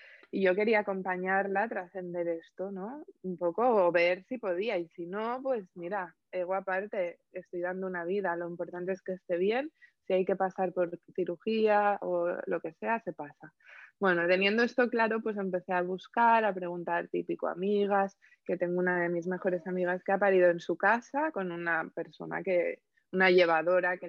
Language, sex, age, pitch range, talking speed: Spanish, female, 20-39, 175-200 Hz, 185 wpm